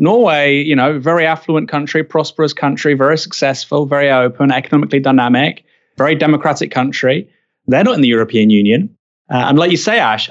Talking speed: 170 wpm